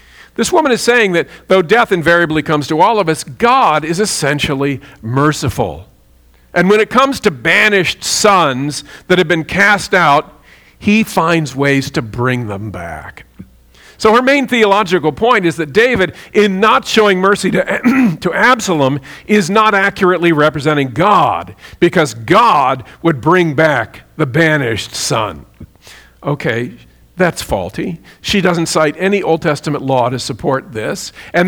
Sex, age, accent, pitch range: male, 50-69, American, 150-205 Hz